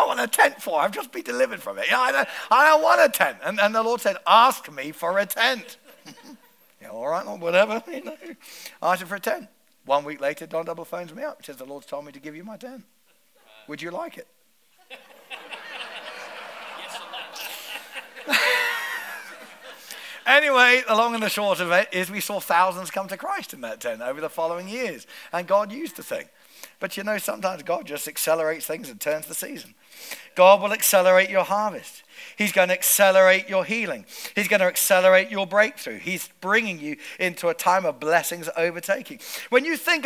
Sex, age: male, 50-69